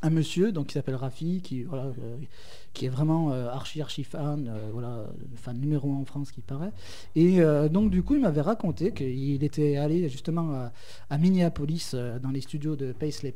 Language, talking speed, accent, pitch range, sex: French, 200 wpm, French, 135-160 Hz, male